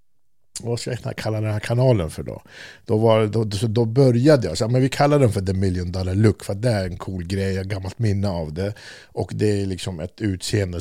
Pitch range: 90-110 Hz